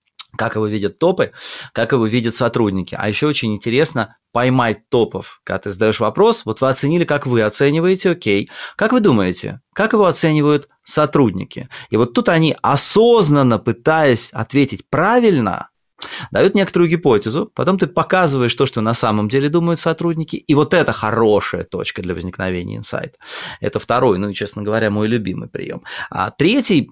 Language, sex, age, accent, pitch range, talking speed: Russian, male, 20-39, native, 110-155 Hz, 160 wpm